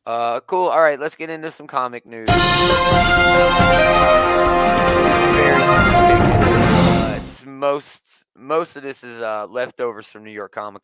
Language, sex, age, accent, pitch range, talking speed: English, male, 30-49, American, 110-155 Hz, 125 wpm